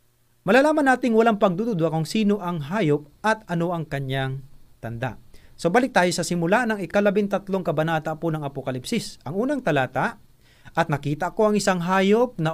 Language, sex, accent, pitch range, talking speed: Filipino, male, native, 145-210 Hz, 165 wpm